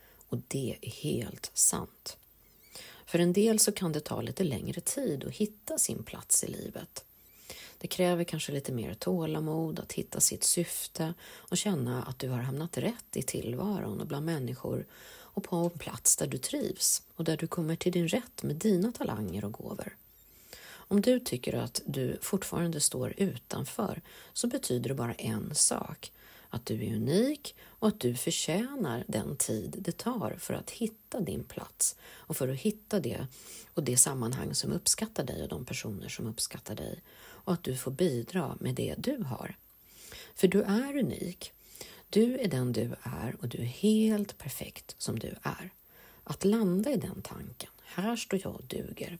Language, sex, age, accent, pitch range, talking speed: Swedish, female, 40-59, native, 140-210 Hz, 180 wpm